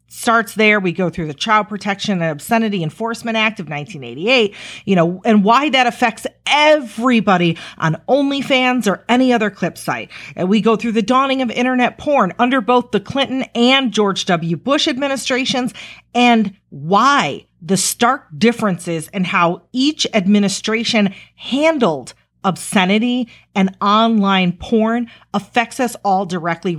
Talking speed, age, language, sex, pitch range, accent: 145 wpm, 40-59, English, female, 180-240 Hz, American